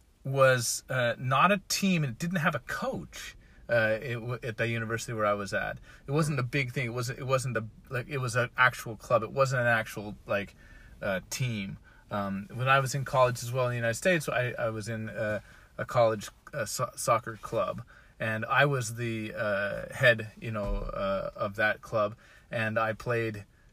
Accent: American